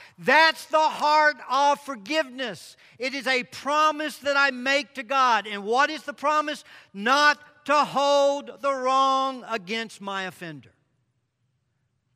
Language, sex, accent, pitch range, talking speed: English, male, American, 195-285 Hz, 135 wpm